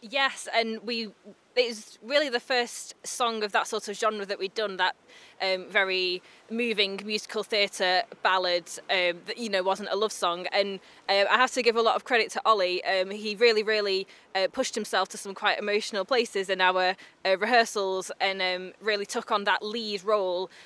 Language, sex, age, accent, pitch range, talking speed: English, female, 20-39, British, 185-220 Hz, 200 wpm